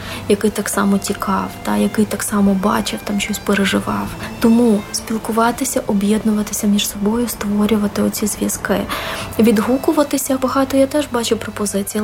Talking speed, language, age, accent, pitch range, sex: 130 wpm, Ukrainian, 20-39, native, 205-245 Hz, female